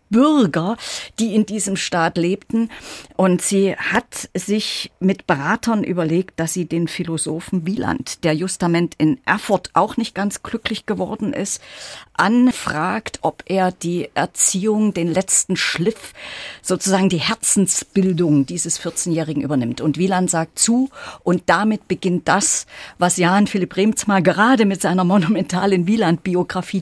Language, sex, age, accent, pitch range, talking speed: German, female, 50-69, German, 170-215 Hz, 135 wpm